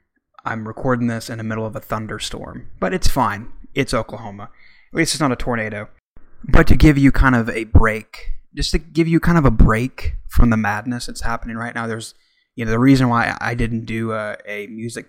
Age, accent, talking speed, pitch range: 20-39, American, 220 wpm, 110-125 Hz